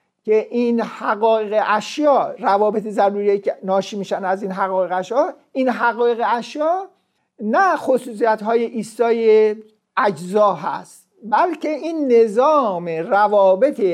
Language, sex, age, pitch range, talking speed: Persian, male, 50-69, 205-260 Hz, 110 wpm